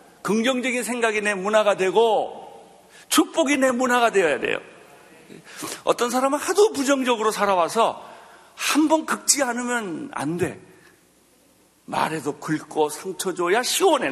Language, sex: Korean, male